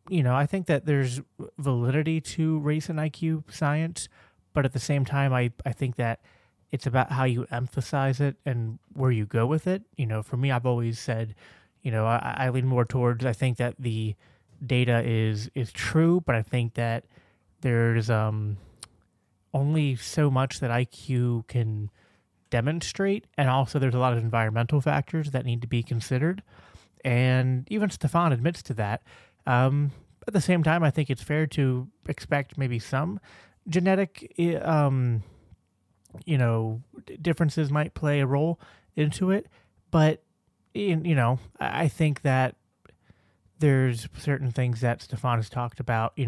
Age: 30-49